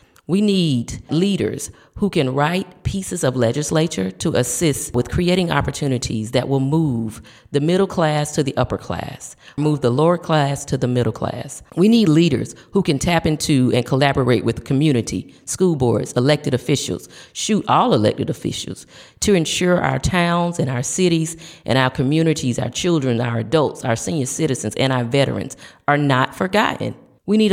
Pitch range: 120-160 Hz